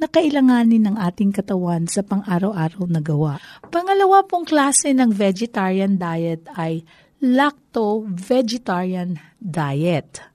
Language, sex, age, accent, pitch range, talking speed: Filipino, female, 40-59, native, 195-270 Hz, 105 wpm